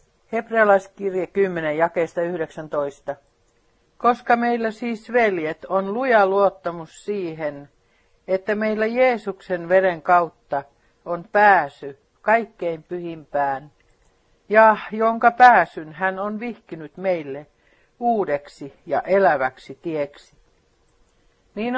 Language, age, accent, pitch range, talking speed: Finnish, 60-79, native, 155-220 Hz, 90 wpm